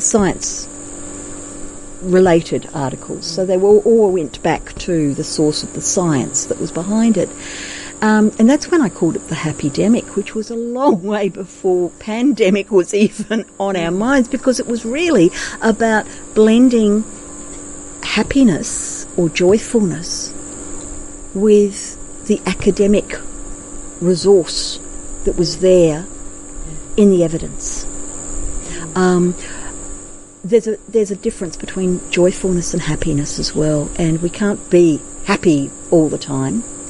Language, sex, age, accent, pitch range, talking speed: English, female, 50-69, Australian, 165-215 Hz, 130 wpm